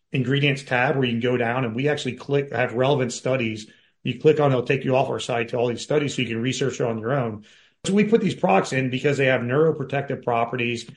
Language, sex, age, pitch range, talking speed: English, male, 40-59, 115-140 Hz, 250 wpm